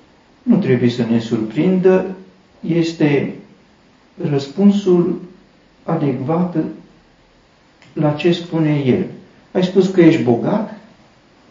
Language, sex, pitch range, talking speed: Romanian, male, 130-200 Hz, 90 wpm